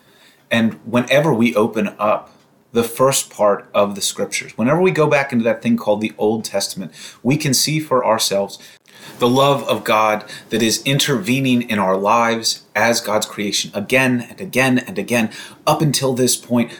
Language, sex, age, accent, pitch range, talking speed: English, male, 30-49, American, 105-130 Hz, 175 wpm